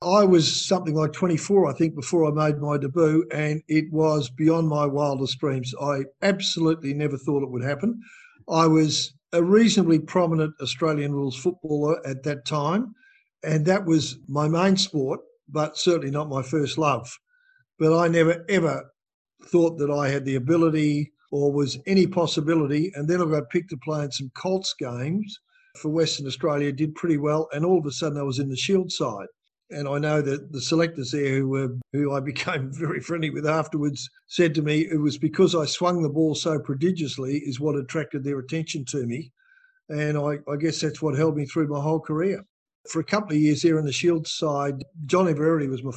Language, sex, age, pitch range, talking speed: English, male, 50-69, 145-170 Hz, 195 wpm